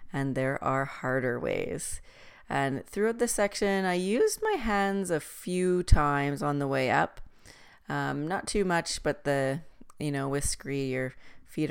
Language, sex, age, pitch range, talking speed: English, female, 30-49, 130-155 Hz, 165 wpm